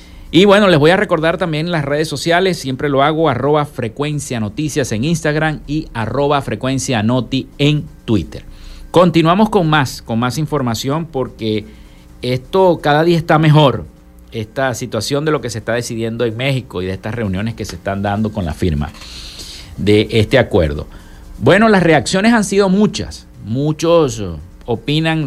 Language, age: Spanish, 50-69